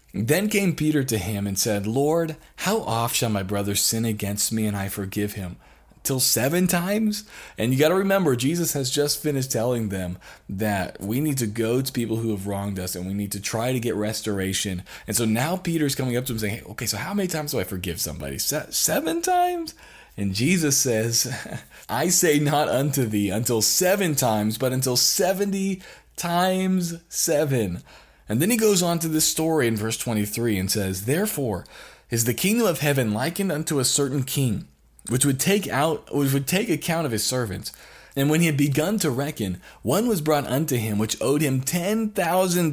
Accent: American